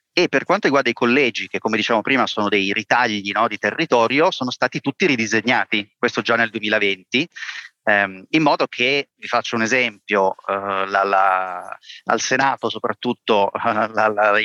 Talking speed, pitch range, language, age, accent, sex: 170 wpm, 110-130 Hz, Italian, 30-49, native, male